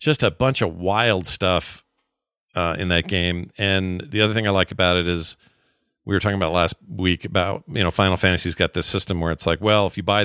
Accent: American